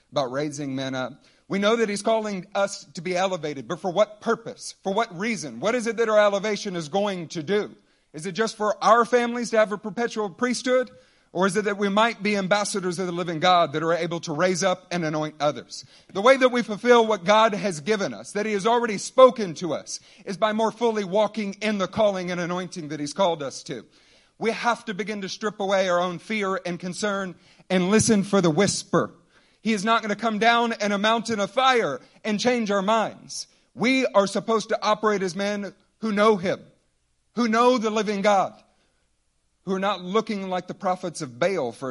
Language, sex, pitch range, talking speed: English, male, 170-220 Hz, 220 wpm